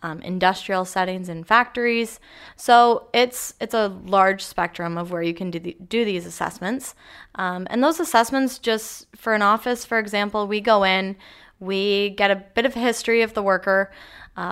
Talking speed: 180 wpm